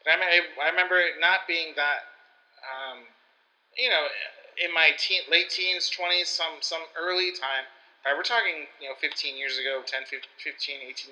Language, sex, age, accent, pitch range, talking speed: English, male, 30-49, American, 135-160 Hz, 165 wpm